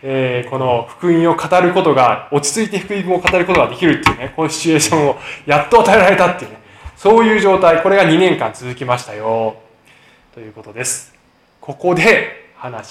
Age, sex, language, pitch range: 20-39, male, Japanese, 135-200 Hz